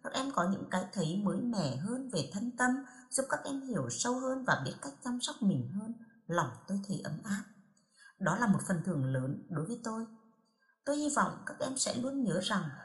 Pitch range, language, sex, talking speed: 170-245 Hz, Vietnamese, female, 225 wpm